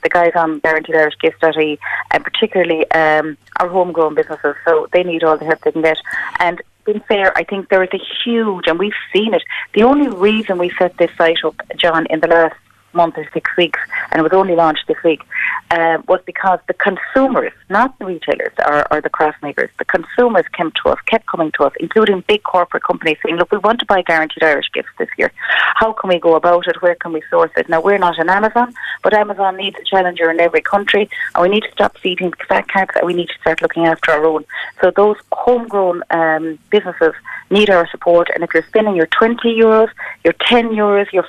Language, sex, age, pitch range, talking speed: English, female, 30-49, 165-210 Hz, 225 wpm